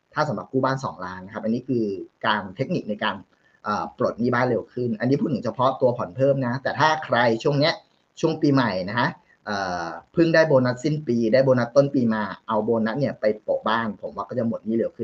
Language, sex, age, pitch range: Thai, male, 20-39, 115-150 Hz